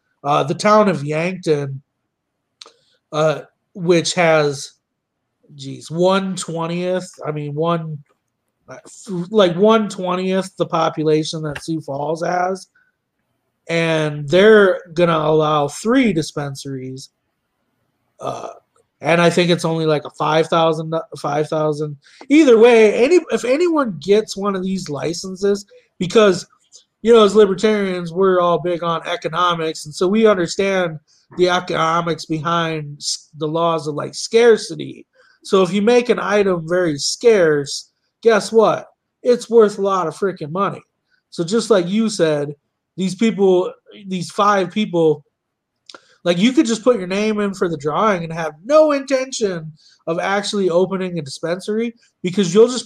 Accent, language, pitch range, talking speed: American, English, 160-205 Hz, 135 wpm